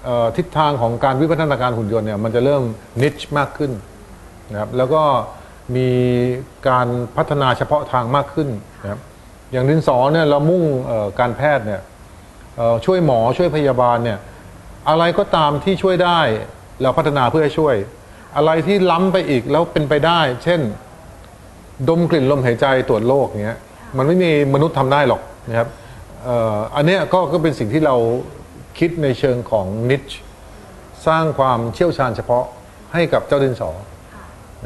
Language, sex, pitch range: Thai, male, 115-150 Hz